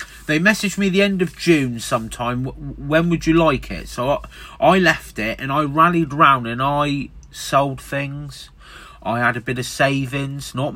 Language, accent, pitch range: English, British, 100-155 Hz